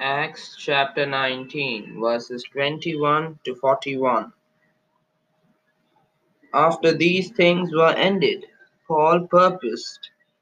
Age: 20-39